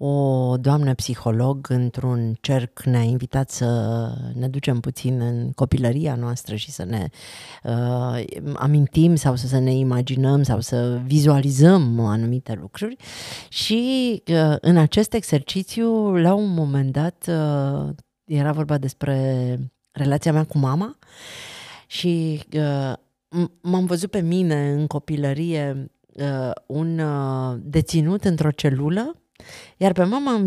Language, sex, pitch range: Romanian, female, 135-180 Hz